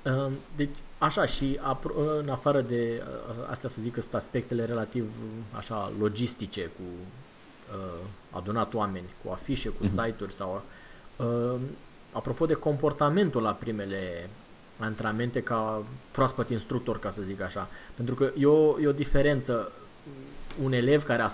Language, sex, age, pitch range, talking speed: Romanian, male, 20-39, 110-140 Hz, 120 wpm